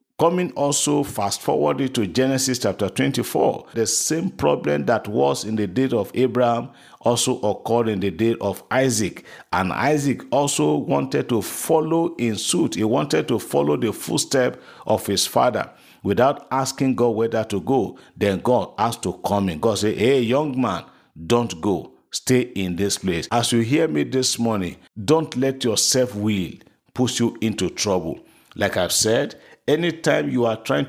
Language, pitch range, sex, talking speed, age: English, 100-130 Hz, male, 165 wpm, 50-69